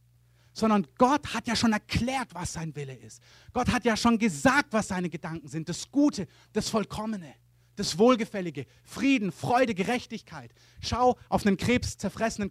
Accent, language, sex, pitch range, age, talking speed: German, German, male, 135-220 Hz, 30-49, 155 wpm